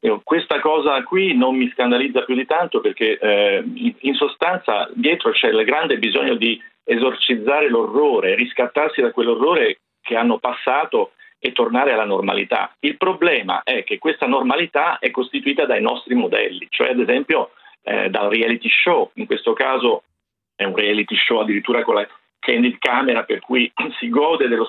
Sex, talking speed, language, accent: male, 160 wpm, Italian, native